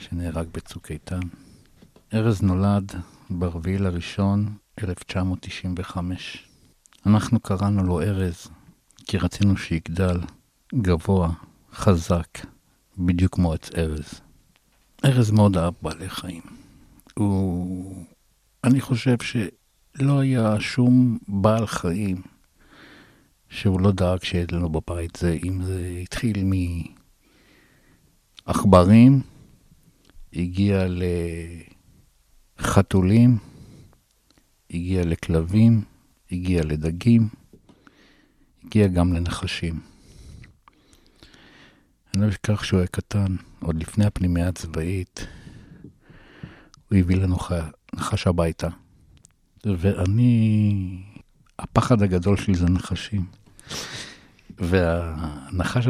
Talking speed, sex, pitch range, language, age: 80 wpm, male, 85-100 Hz, Hebrew, 60-79